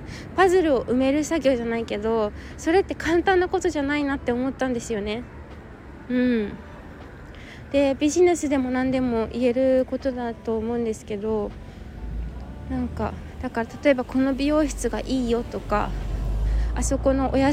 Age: 20-39